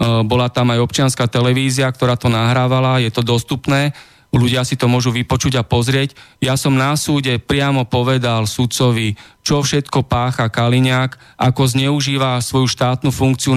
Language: Slovak